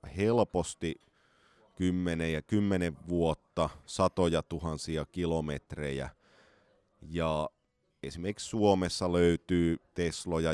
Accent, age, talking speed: native, 30-49, 70 wpm